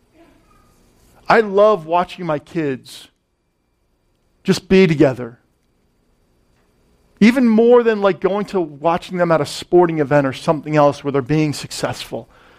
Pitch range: 140-205 Hz